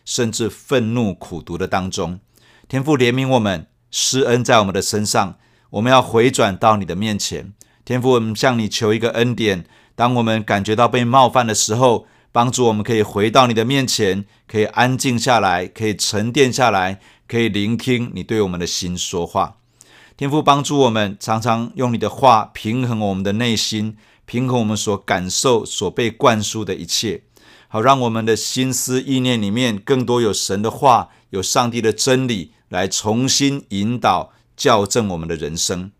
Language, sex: Chinese, male